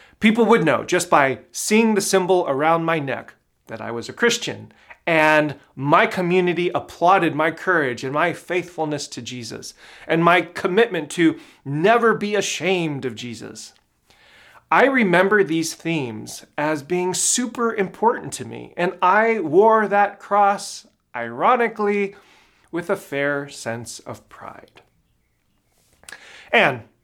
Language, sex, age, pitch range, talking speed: English, male, 30-49, 135-200 Hz, 130 wpm